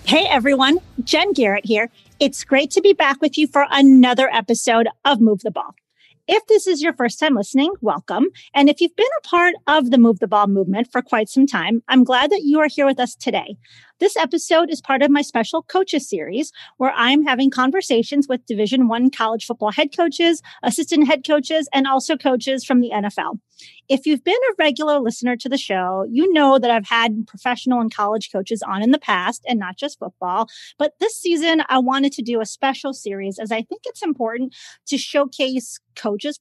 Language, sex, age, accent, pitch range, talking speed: English, female, 30-49, American, 230-305 Hz, 205 wpm